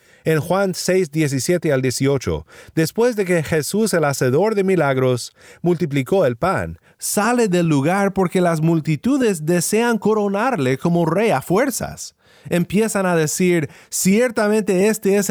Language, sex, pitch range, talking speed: Spanish, male, 150-200 Hz, 135 wpm